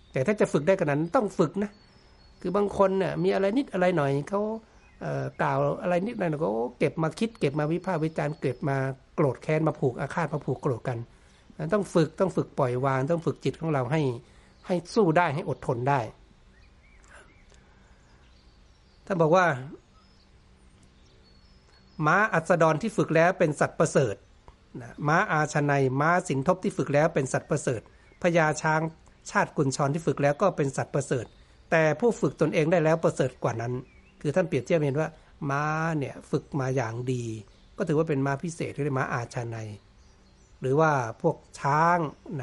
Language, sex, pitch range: Thai, male, 130-165 Hz